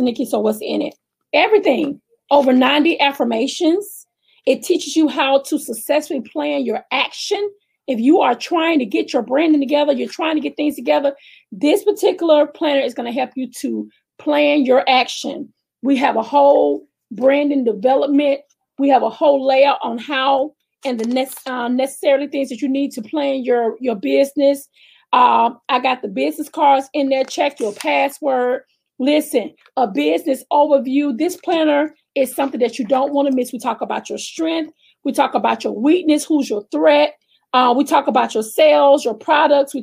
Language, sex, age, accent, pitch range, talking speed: English, female, 30-49, American, 260-305 Hz, 180 wpm